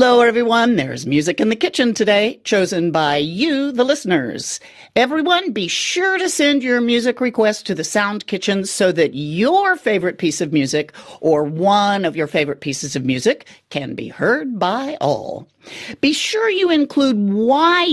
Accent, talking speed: American, 165 wpm